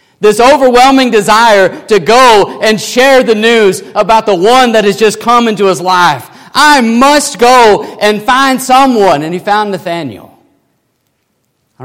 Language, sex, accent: English, male, American